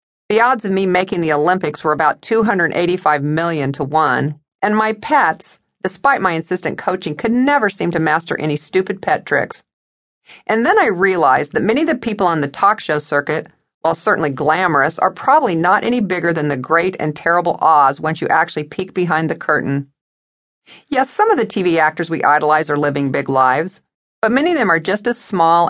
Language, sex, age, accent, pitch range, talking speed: English, female, 50-69, American, 150-200 Hz, 195 wpm